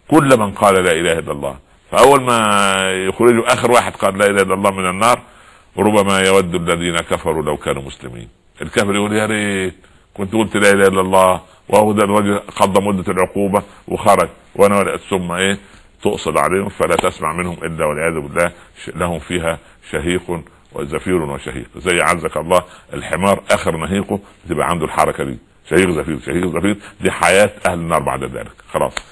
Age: 60-79